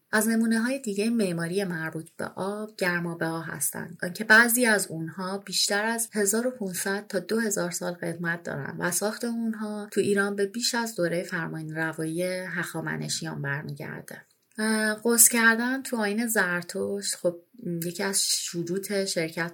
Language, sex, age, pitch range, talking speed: Persian, female, 30-49, 170-215 Hz, 135 wpm